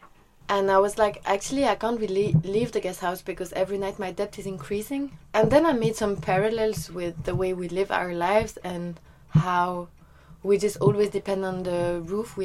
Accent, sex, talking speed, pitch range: Belgian, female, 200 wpm, 175-210 Hz